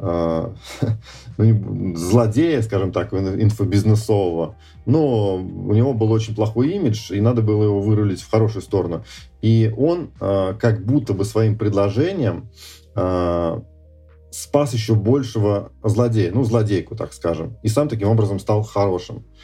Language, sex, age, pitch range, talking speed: Russian, male, 30-49, 95-115 Hz, 125 wpm